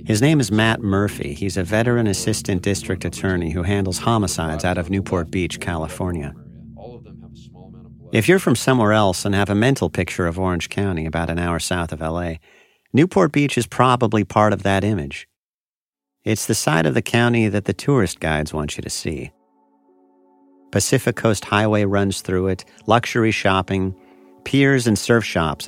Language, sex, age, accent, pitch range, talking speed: English, male, 50-69, American, 90-115 Hz, 170 wpm